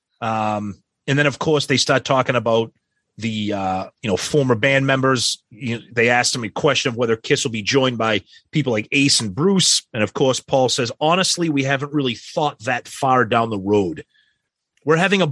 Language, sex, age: English, male, 30-49